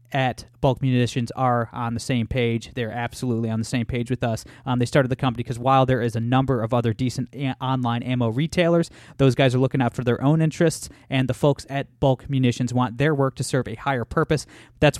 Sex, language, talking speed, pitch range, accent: male, English, 230 wpm, 125-150 Hz, American